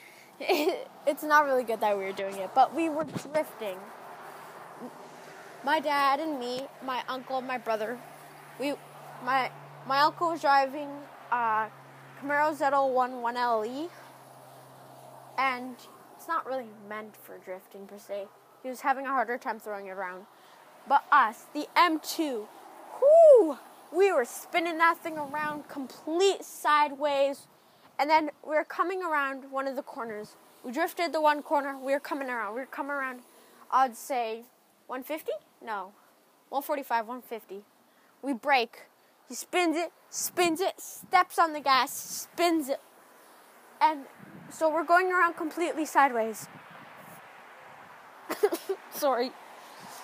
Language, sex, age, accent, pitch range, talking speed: English, female, 10-29, American, 255-325 Hz, 140 wpm